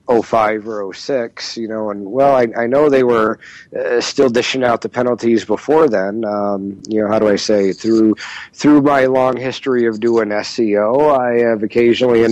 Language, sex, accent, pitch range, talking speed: English, male, American, 110-140 Hz, 200 wpm